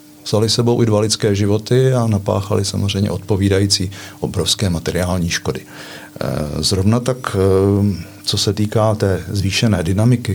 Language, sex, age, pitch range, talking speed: Czech, male, 50-69, 95-115 Hz, 115 wpm